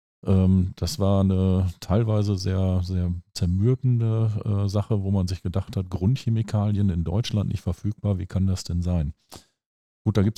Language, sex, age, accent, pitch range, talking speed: German, male, 40-59, German, 90-105 Hz, 150 wpm